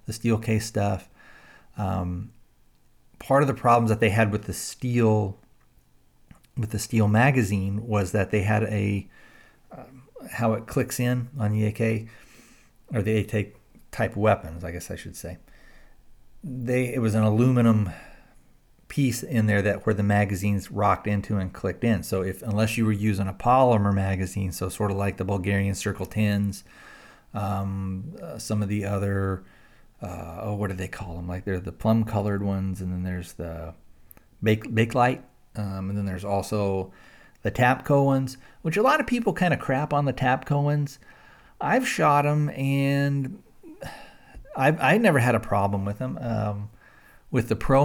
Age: 40-59